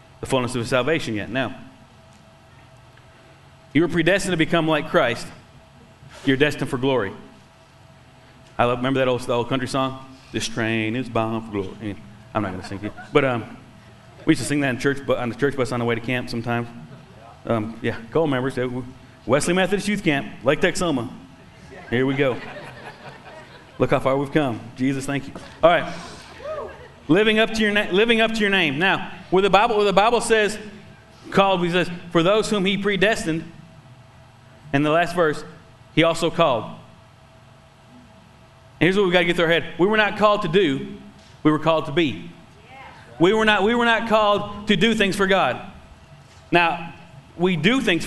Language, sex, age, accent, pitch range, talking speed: English, male, 30-49, American, 130-195 Hz, 190 wpm